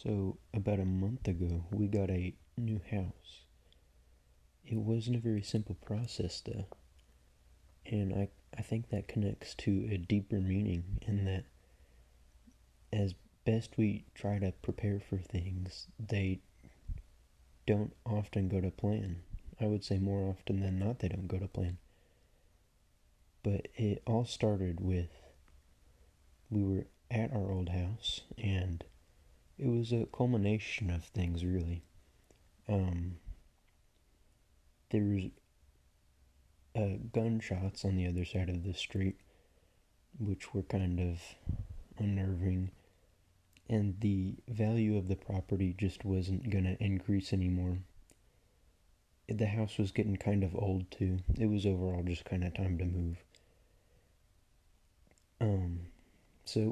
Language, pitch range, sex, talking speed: English, 85-105 Hz, male, 130 wpm